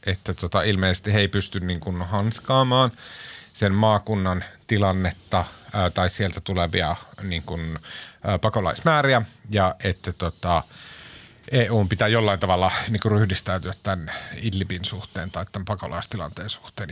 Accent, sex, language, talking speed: native, male, Finnish, 130 wpm